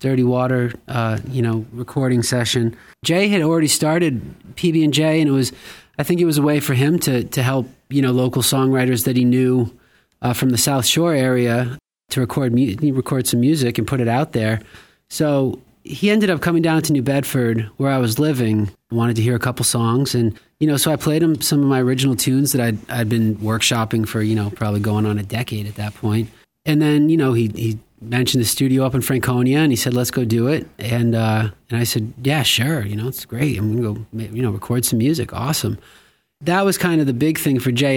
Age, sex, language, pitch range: 30-49, male, English, 115-140 Hz